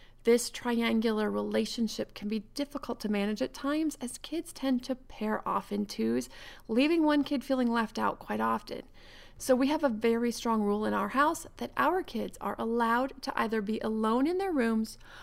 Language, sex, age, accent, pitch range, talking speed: English, female, 30-49, American, 220-265 Hz, 190 wpm